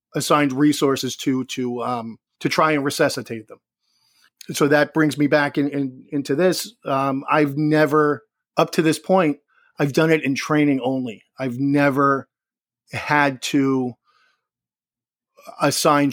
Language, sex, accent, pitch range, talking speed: English, male, American, 135-150 Hz, 140 wpm